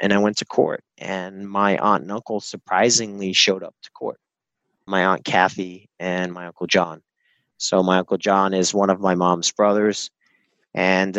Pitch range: 100-115 Hz